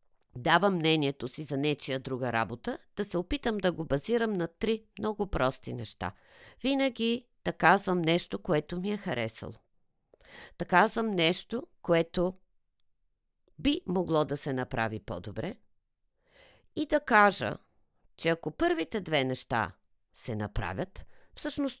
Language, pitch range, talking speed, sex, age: Bulgarian, 125-205 Hz, 130 wpm, female, 50-69